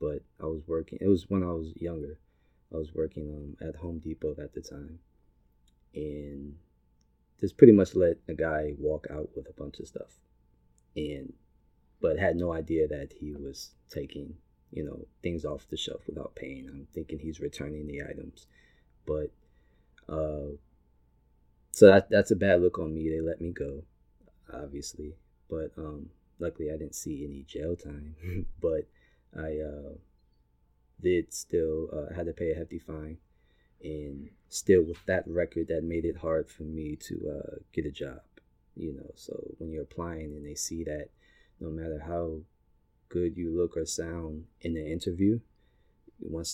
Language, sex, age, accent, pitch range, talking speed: English, male, 20-39, American, 65-80 Hz, 170 wpm